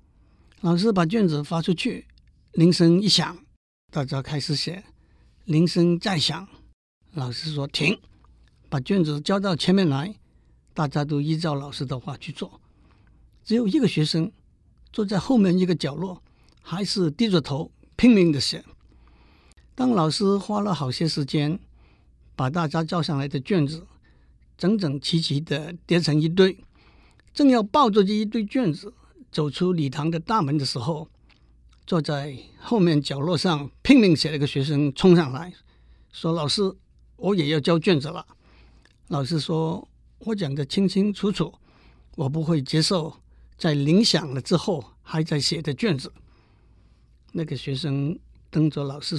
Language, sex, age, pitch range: Chinese, male, 60-79, 140-185 Hz